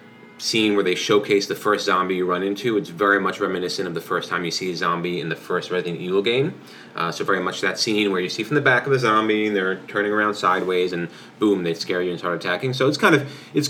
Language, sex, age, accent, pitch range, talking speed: English, male, 30-49, American, 100-140 Hz, 265 wpm